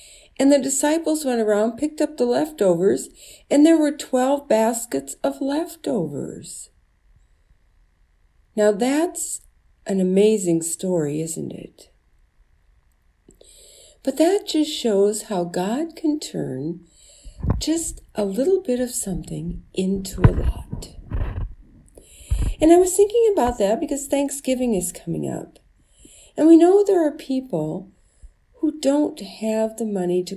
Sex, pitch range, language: female, 180-295 Hz, English